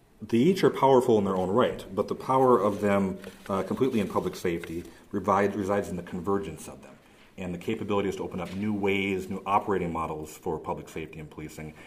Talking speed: 200 wpm